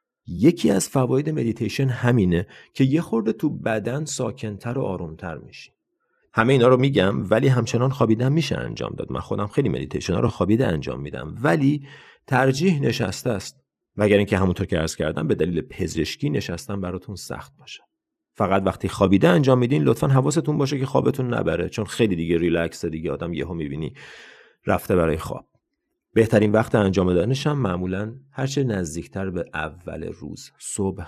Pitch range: 95-130 Hz